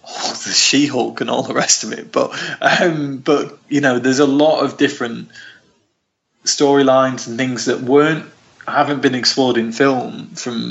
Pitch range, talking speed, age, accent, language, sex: 125-155 Hz, 175 wpm, 20-39, British, English, male